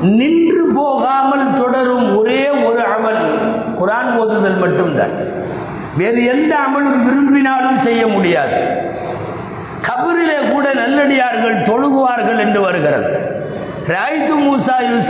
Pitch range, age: 195-260 Hz, 50-69